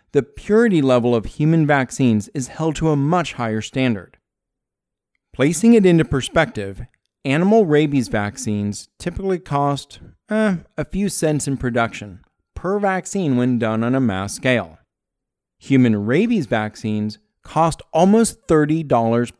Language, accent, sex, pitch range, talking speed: English, American, male, 110-150 Hz, 130 wpm